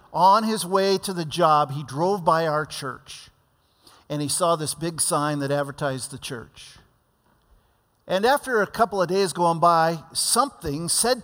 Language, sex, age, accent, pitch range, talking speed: English, male, 50-69, American, 165-220 Hz, 165 wpm